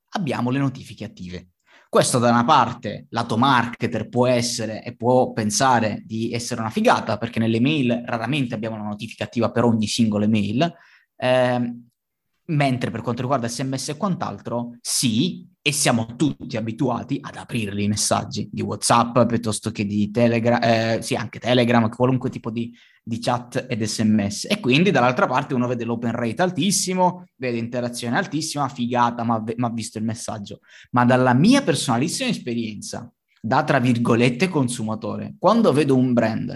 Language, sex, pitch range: Italian, male, 115-150 Hz